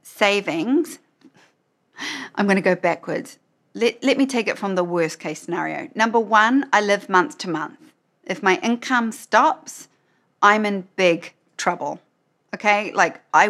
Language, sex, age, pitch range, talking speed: English, female, 40-59, 180-230 Hz, 145 wpm